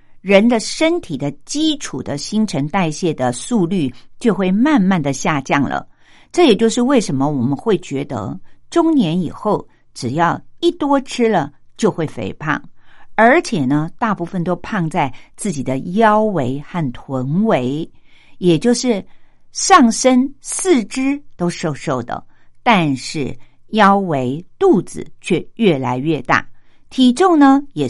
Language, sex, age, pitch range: Japanese, female, 50-69, 145-230 Hz